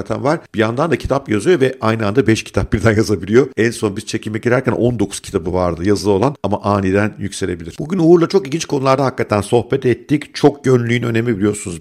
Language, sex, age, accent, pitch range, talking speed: Turkish, male, 50-69, native, 105-125 Hz, 195 wpm